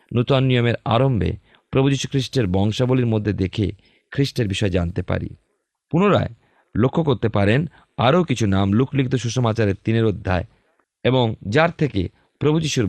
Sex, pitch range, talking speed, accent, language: male, 90-120 Hz, 125 wpm, native, Bengali